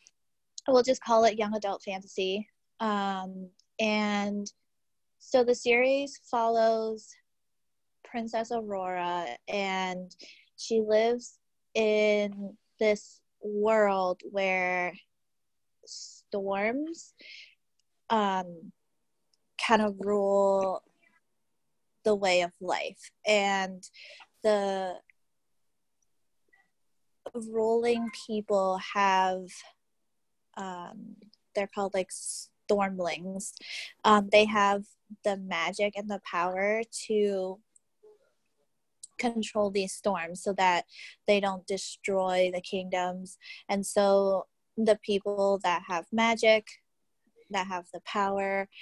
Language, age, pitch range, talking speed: English, 20-39, 185-220 Hz, 85 wpm